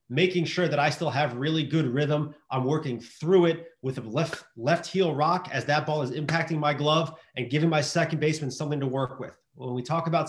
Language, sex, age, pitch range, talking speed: English, male, 30-49, 130-170 Hz, 225 wpm